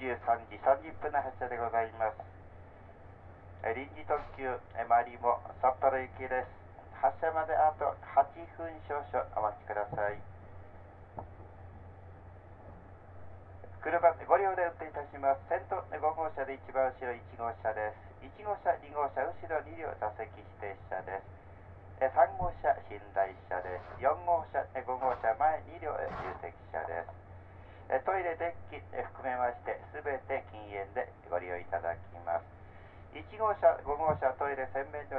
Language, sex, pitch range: Japanese, male, 95-135 Hz